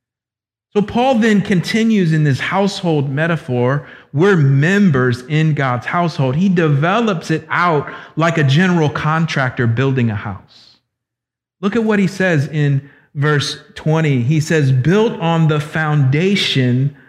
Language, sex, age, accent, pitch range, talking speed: English, male, 50-69, American, 140-210 Hz, 135 wpm